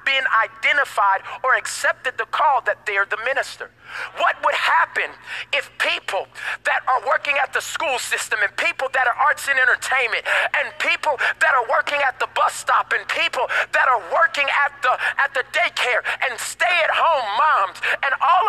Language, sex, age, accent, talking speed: English, male, 40-59, American, 170 wpm